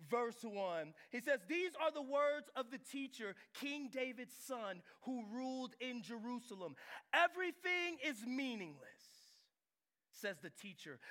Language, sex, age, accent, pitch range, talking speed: English, male, 30-49, American, 230-320 Hz, 130 wpm